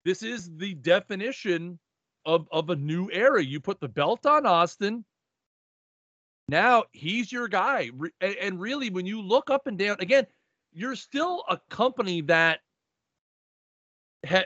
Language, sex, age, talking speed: English, male, 40-59, 145 wpm